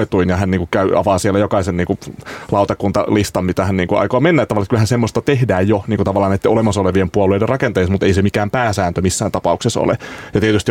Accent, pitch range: native, 95-110 Hz